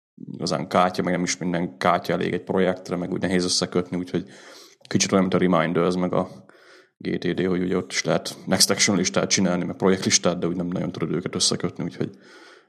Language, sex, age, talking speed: Hungarian, male, 30-49, 205 wpm